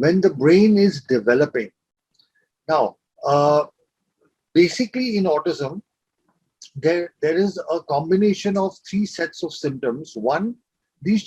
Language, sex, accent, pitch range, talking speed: English, male, Indian, 145-195 Hz, 115 wpm